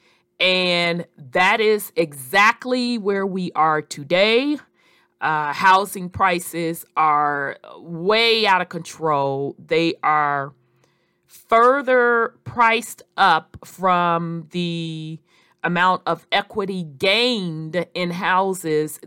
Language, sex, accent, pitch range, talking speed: English, female, American, 165-205 Hz, 90 wpm